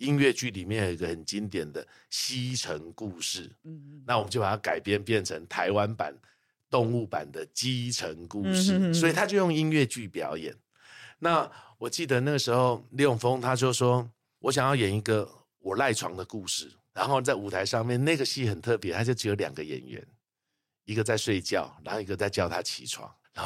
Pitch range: 105-140 Hz